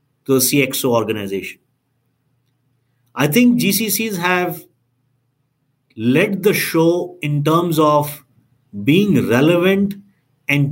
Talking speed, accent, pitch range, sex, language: 95 wpm, Indian, 130-170 Hz, male, English